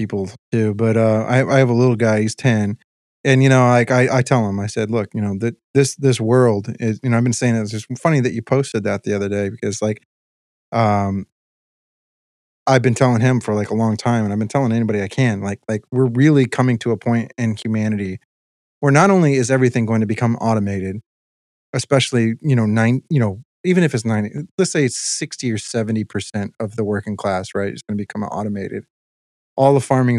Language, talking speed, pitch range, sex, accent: English, 225 wpm, 100-125 Hz, male, American